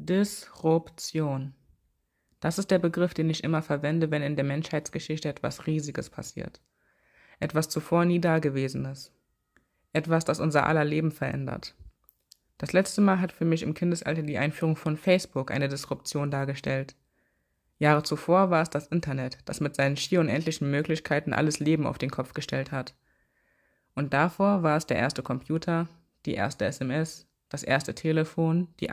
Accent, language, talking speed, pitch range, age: German, German, 155 wpm, 145-170 Hz, 20-39